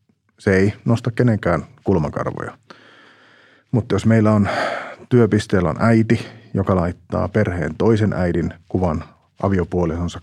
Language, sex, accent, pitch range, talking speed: Finnish, male, native, 85-105 Hz, 110 wpm